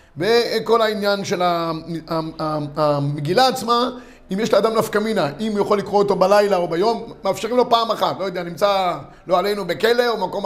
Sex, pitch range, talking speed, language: male, 190-235 Hz, 165 wpm, Hebrew